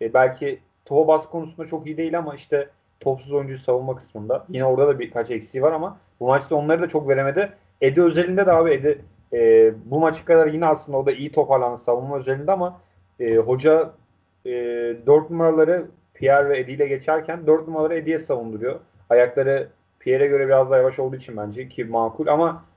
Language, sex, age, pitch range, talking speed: Turkish, male, 30-49, 125-155 Hz, 185 wpm